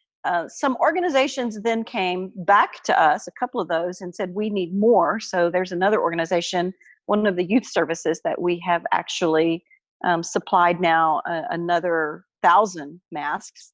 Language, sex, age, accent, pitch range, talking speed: English, female, 40-59, American, 175-230 Hz, 160 wpm